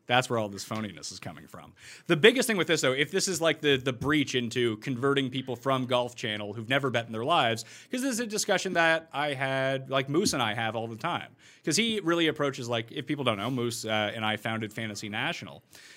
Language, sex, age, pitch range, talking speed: English, male, 30-49, 115-160 Hz, 245 wpm